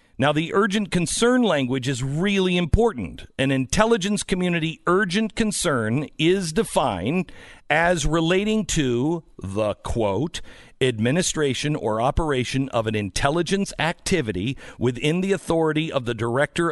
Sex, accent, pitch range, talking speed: male, American, 125-180 Hz, 120 wpm